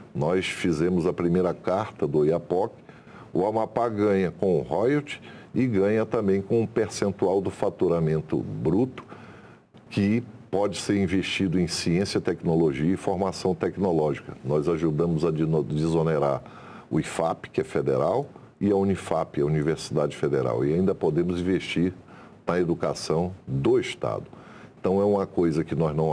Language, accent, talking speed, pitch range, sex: Portuguese, Brazilian, 140 wpm, 85-115 Hz, male